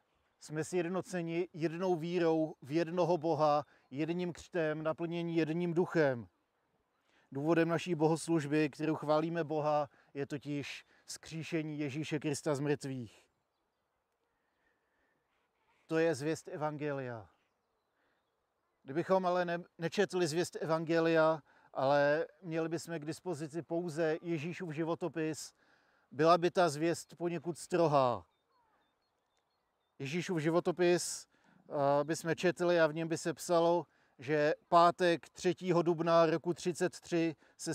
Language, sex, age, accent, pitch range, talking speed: Czech, male, 40-59, native, 150-170 Hz, 105 wpm